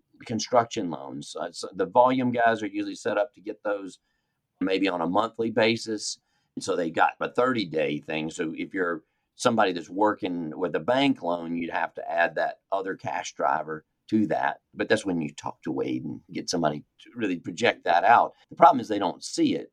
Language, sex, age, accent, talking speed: English, male, 50-69, American, 200 wpm